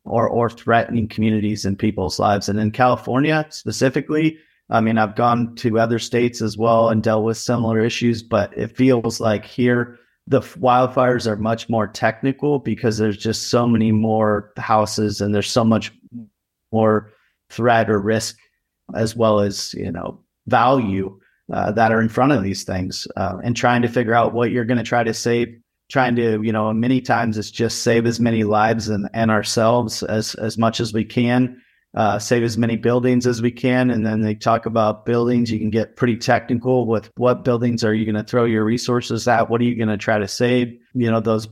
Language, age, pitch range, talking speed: English, 30-49, 110-120 Hz, 200 wpm